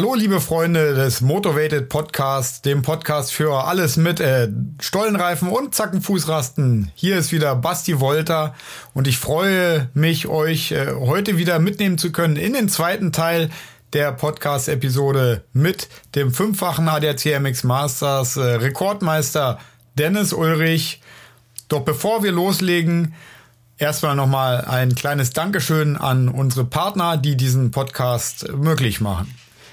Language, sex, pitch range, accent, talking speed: German, male, 125-175 Hz, German, 130 wpm